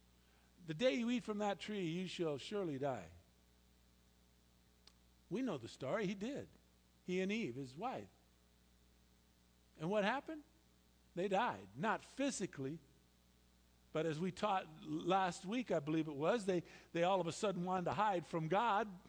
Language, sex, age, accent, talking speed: English, male, 50-69, American, 155 wpm